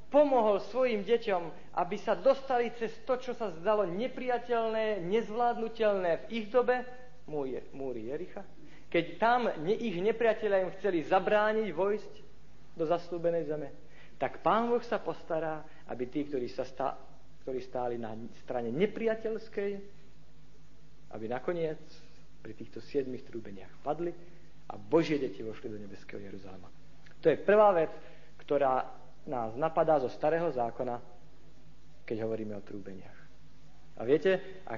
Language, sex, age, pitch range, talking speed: Slovak, male, 50-69, 130-210 Hz, 130 wpm